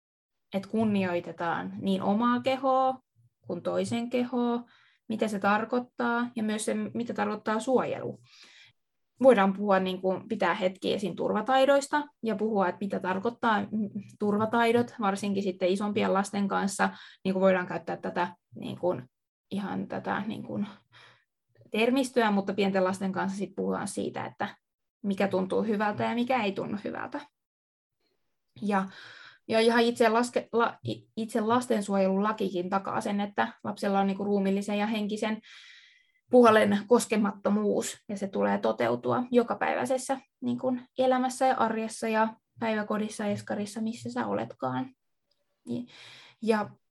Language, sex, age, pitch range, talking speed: Finnish, female, 20-39, 195-235 Hz, 130 wpm